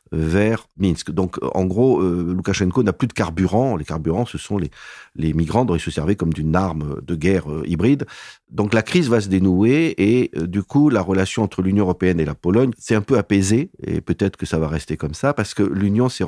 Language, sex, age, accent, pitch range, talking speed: French, male, 40-59, French, 80-100 Hz, 230 wpm